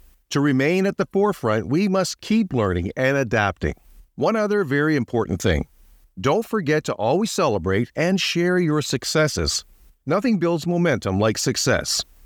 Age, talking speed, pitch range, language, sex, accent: 50-69, 145 wpm, 110-180 Hz, English, male, American